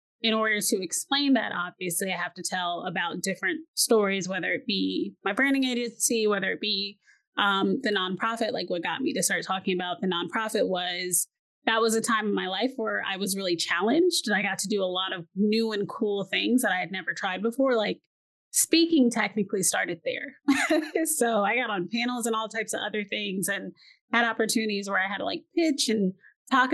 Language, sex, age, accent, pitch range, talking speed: English, female, 20-39, American, 200-260 Hz, 210 wpm